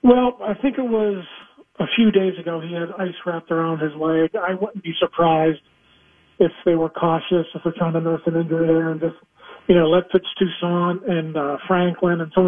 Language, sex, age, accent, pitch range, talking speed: English, male, 40-59, American, 165-195 Hz, 210 wpm